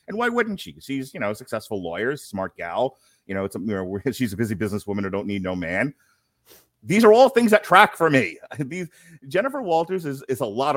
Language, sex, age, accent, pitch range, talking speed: English, male, 30-49, American, 100-135 Hz, 230 wpm